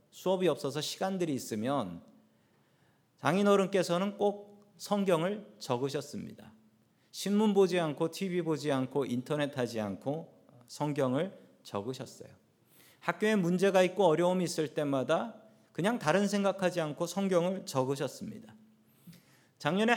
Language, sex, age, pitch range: Korean, male, 40-59, 135-190 Hz